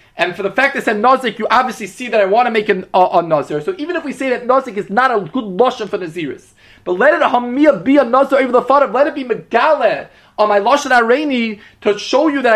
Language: English